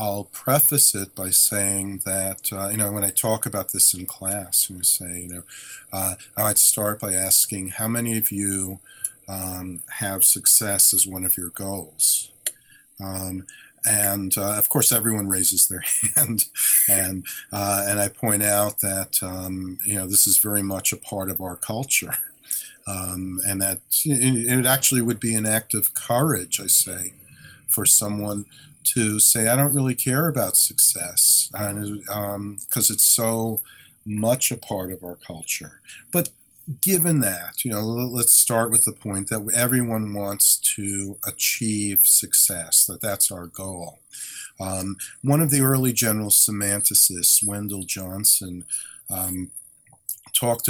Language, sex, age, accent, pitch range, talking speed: English, male, 40-59, American, 95-115 Hz, 155 wpm